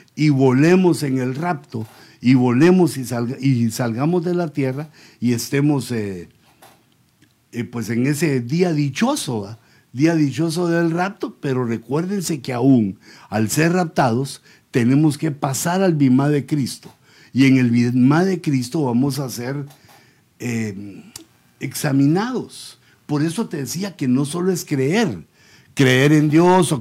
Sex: male